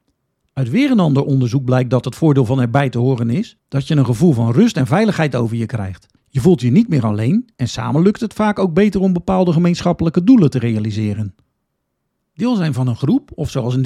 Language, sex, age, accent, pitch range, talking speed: Dutch, male, 50-69, Dutch, 125-200 Hz, 225 wpm